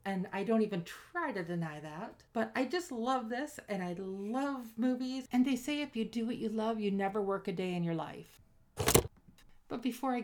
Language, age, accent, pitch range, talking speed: English, 50-69, American, 175-225 Hz, 215 wpm